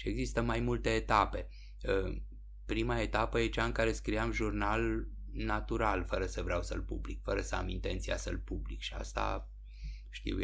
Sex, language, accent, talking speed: male, Romanian, native, 160 wpm